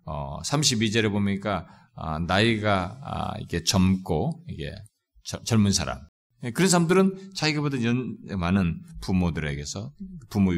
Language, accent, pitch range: Korean, native, 85-145 Hz